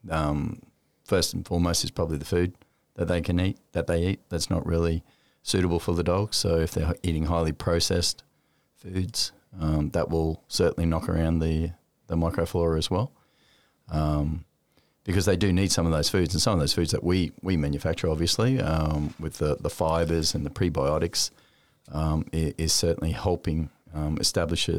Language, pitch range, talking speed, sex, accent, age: English, 80-90 Hz, 175 wpm, male, Australian, 40-59